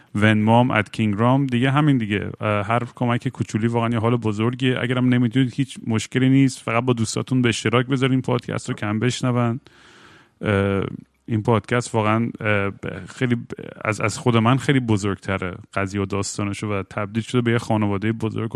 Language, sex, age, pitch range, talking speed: Persian, male, 30-49, 110-130 Hz, 160 wpm